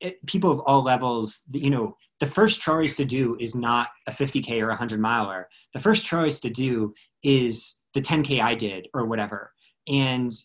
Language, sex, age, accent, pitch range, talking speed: English, male, 20-39, American, 110-135 Hz, 195 wpm